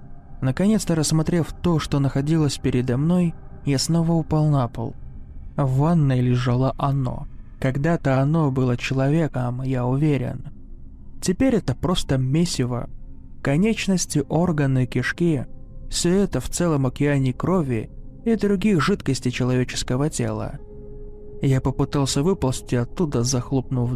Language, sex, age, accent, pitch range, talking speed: Russian, male, 20-39, native, 125-155 Hz, 115 wpm